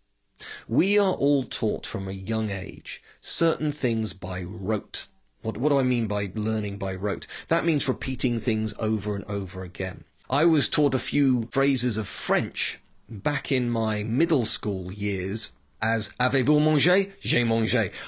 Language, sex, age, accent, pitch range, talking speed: English, male, 30-49, British, 105-135 Hz, 165 wpm